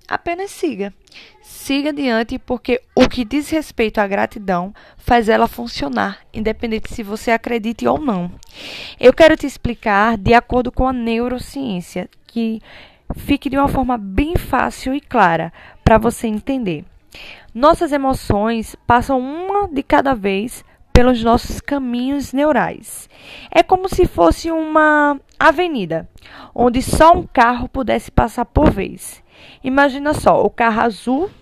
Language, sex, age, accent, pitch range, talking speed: Portuguese, female, 10-29, Brazilian, 230-295 Hz, 135 wpm